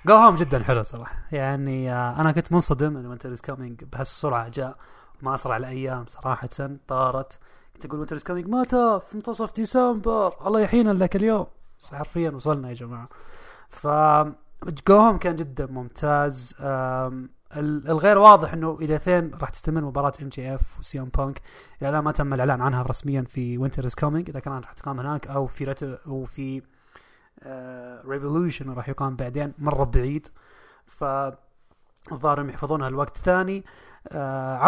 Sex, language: male, English